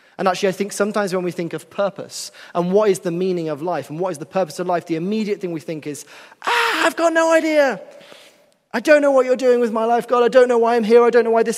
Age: 20-39